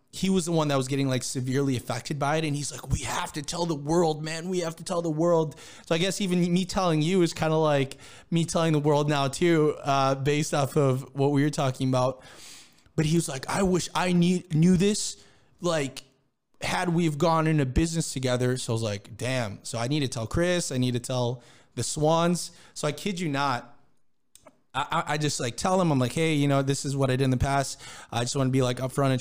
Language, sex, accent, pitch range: English, male, American, 130-170 Hz